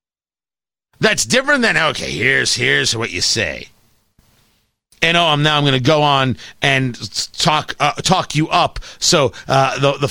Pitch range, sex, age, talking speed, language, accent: 130-200 Hz, male, 40-59, 165 wpm, English, American